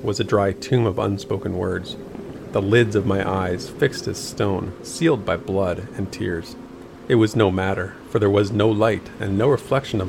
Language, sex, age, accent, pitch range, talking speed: English, male, 40-59, American, 95-110 Hz, 195 wpm